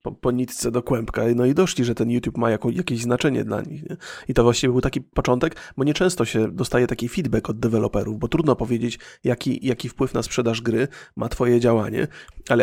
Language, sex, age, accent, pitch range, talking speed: Polish, male, 30-49, native, 120-155 Hz, 205 wpm